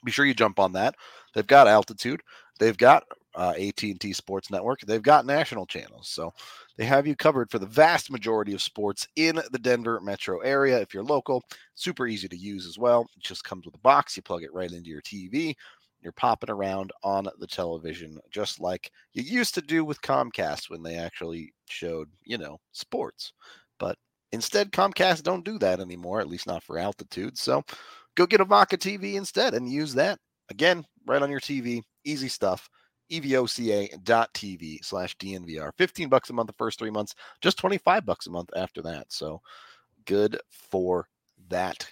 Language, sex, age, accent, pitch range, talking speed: English, male, 30-49, American, 95-140 Hz, 185 wpm